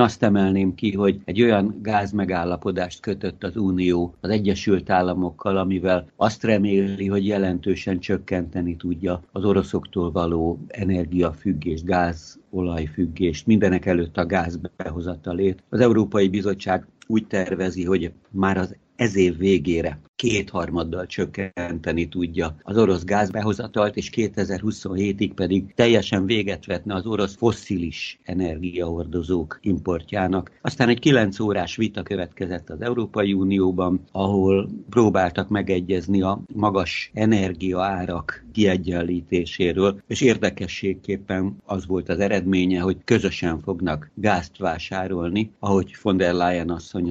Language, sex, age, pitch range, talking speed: Hungarian, male, 60-79, 90-100 Hz, 115 wpm